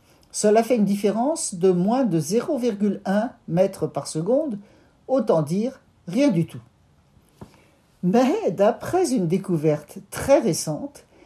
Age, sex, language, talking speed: 60-79, male, French, 115 wpm